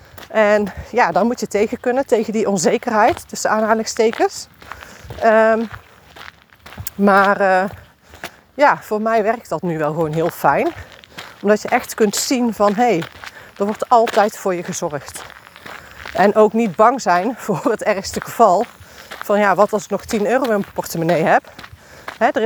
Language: Dutch